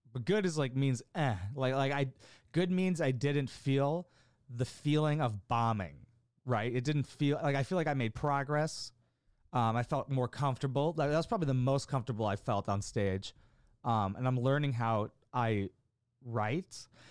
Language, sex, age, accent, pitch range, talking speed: English, male, 30-49, American, 110-140 Hz, 175 wpm